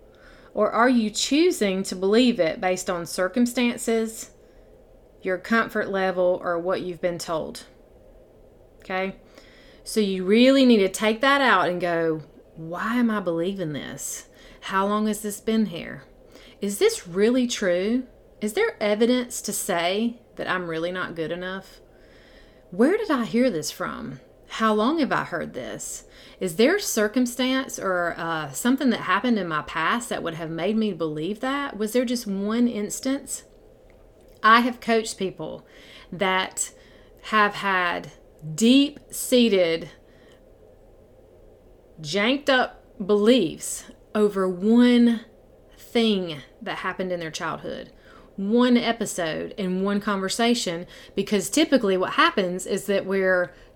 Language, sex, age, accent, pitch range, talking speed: English, female, 30-49, American, 185-240 Hz, 135 wpm